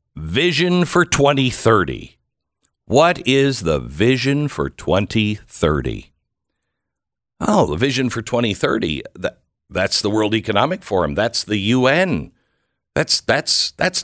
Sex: male